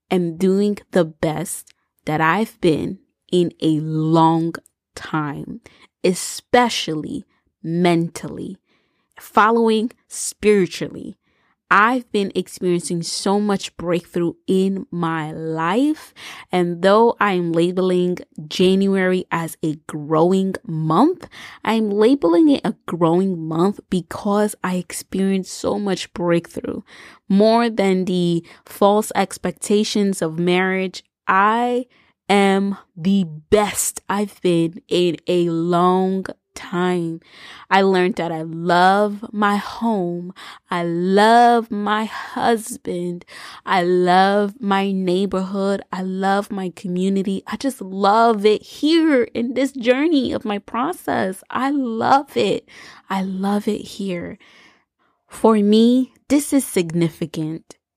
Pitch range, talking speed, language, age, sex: 175-215 Hz, 110 wpm, English, 20-39, female